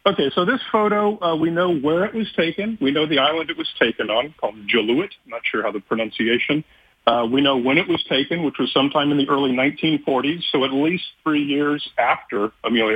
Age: 40-59